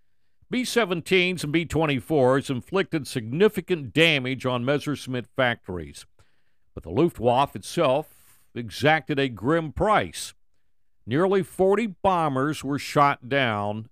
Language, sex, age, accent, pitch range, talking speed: English, male, 60-79, American, 120-165 Hz, 100 wpm